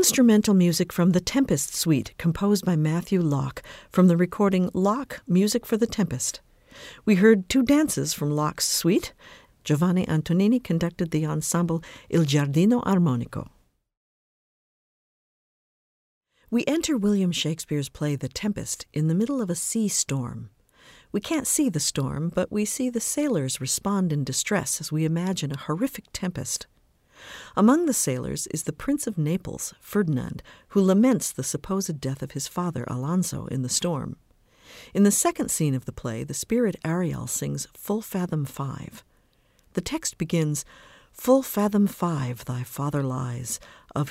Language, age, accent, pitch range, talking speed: English, 50-69, American, 140-205 Hz, 150 wpm